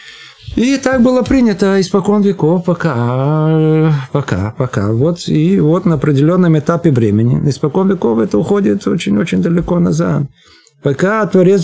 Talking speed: 135 wpm